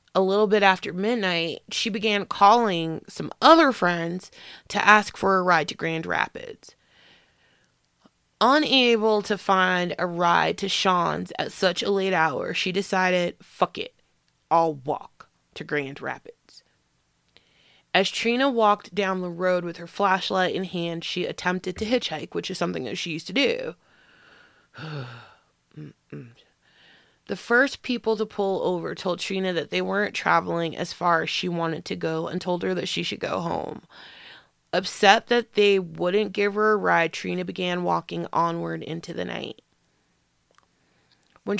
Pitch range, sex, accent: 175-210 Hz, female, American